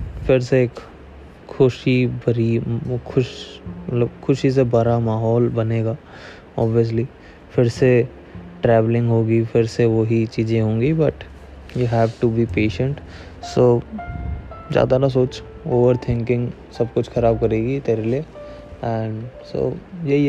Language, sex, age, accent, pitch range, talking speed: Hindi, male, 20-39, native, 90-125 Hz, 125 wpm